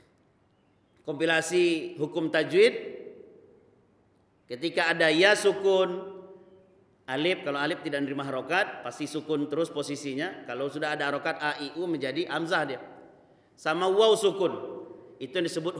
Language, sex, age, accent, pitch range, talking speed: Indonesian, male, 40-59, native, 140-190 Hz, 125 wpm